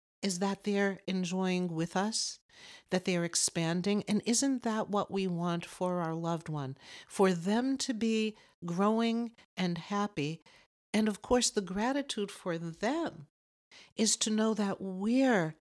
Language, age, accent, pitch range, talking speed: English, 60-79, American, 170-220 Hz, 145 wpm